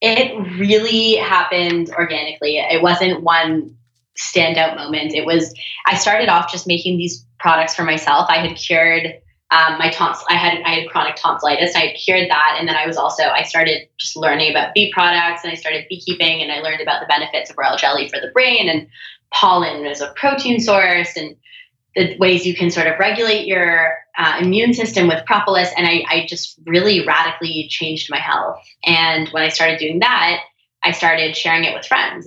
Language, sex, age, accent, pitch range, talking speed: English, female, 20-39, American, 155-175 Hz, 195 wpm